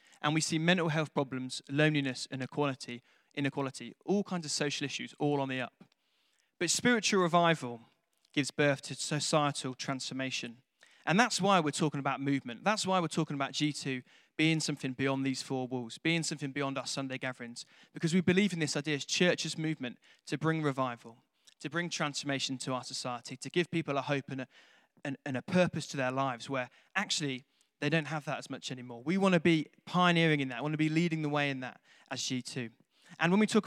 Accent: British